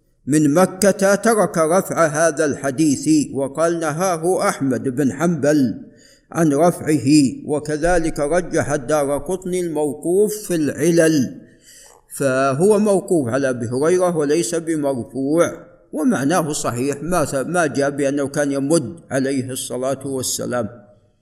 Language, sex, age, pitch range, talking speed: Arabic, male, 50-69, 145-195 Hz, 105 wpm